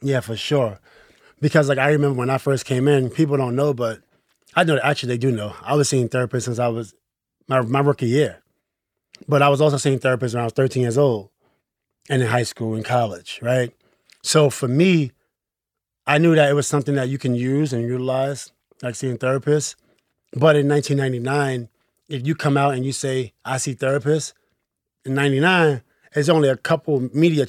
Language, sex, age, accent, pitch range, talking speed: English, male, 20-39, American, 125-150 Hz, 200 wpm